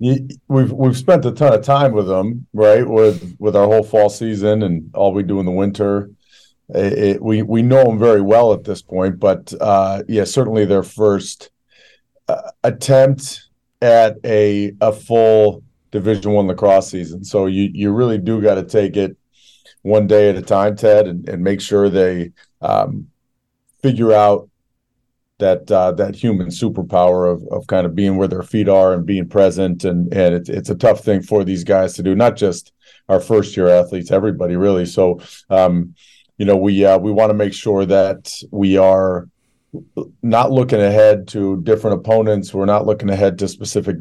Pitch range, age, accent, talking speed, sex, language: 95-110 Hz, 40-59, American, 185 wpm, male, English